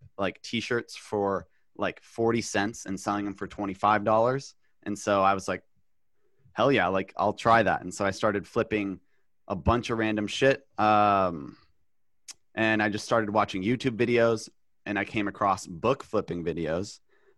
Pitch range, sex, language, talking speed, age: 100-115 Hz, male, English, 160 wpm, 30-49